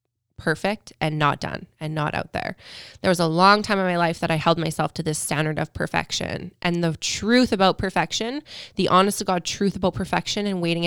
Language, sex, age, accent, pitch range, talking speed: English, female, 20-39, American, 155-195 Hz, 215 wpm